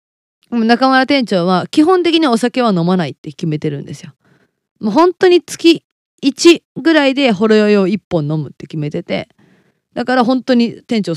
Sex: female